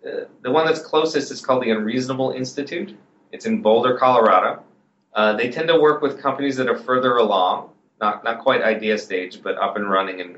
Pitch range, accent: 110-140 Hz, American